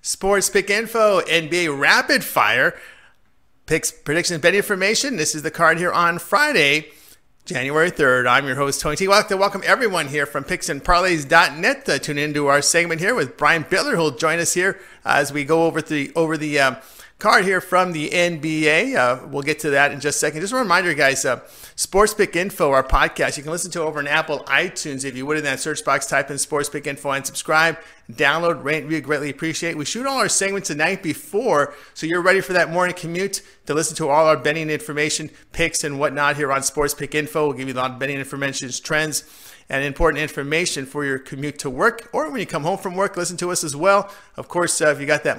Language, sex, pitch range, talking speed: English, male, 145-175 Hz, 225 wpm